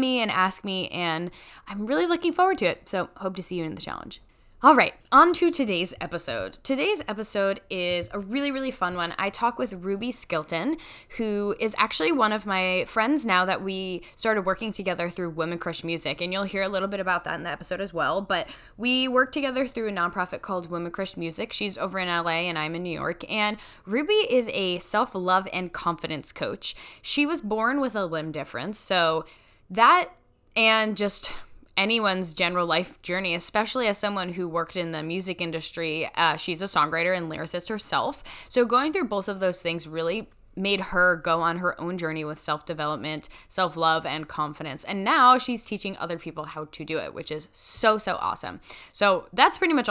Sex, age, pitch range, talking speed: female, 10-29, 170-215 Hz, 200 wpm